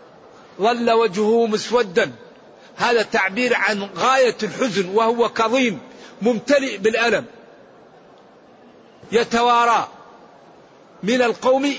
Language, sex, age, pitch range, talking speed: Arabic, male, 50-69, 220-245 Hz, 75 wpm